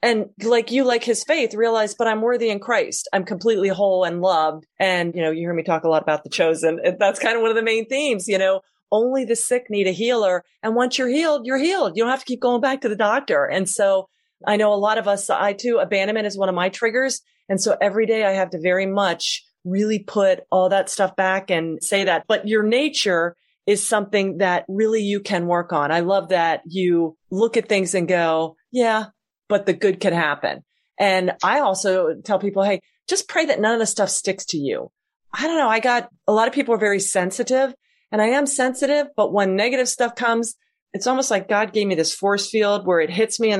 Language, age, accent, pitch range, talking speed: English, 40-59, American, 185-230 Hz, 235 wpm